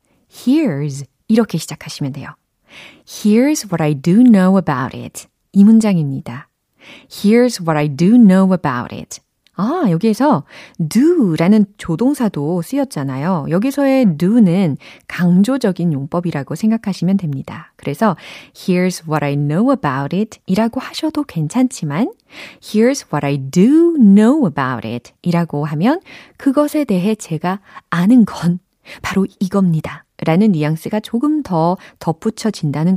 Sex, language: female, Korean